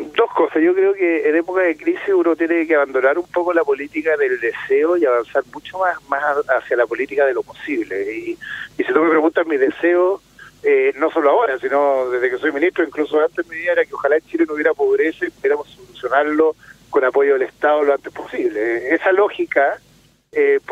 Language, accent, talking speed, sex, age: Spanish, Argentinian, 215 wpm, male, 40-59